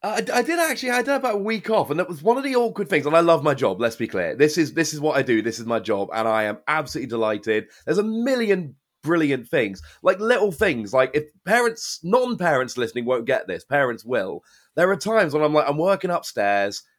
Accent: British